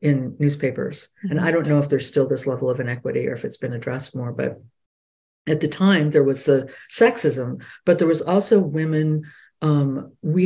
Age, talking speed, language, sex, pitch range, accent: 50-69, 195 wpm, English, female, 150-235 Hz, American